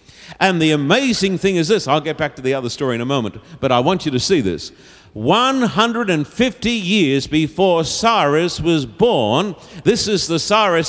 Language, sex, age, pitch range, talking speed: English, male, 50-69, 160-215 Hz, 200 wpm